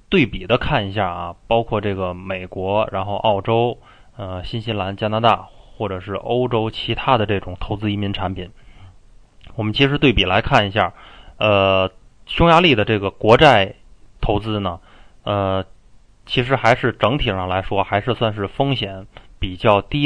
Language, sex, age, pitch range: Chinese, male, 20-39, 95-115 Hz